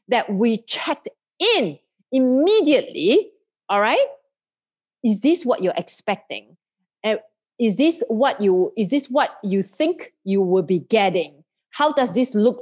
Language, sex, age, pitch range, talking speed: English, female, 40-59, 205-280 Hz, 140 wpm